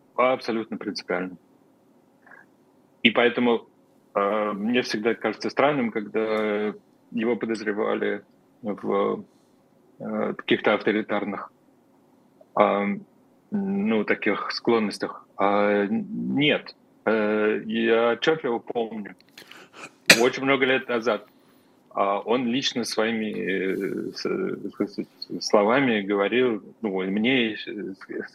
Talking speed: 75 wpm